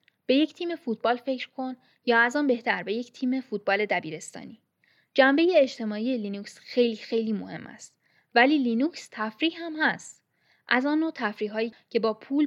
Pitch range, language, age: 210-275 Hz, Persian, 10-29